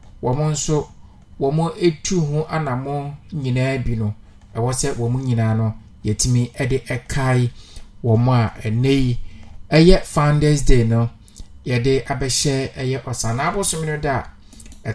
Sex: male